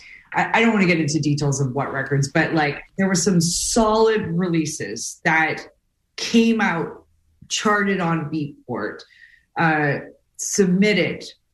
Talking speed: 130 wpm